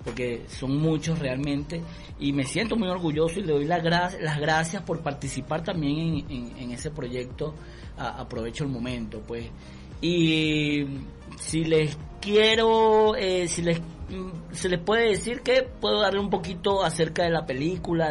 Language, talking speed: Spanish, 155 wpm